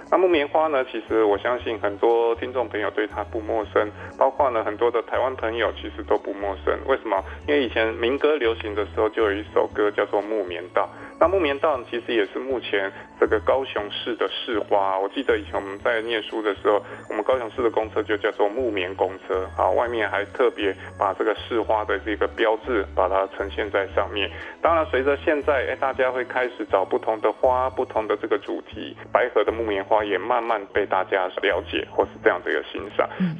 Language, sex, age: Chinese, male, 20-39